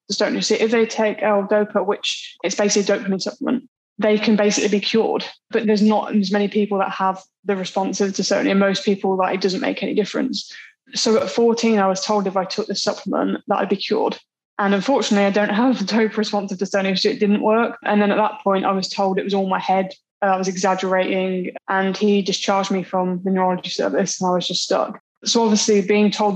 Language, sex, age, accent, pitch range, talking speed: English, female, 20-39, British, 195-215 Hz, 225 wpm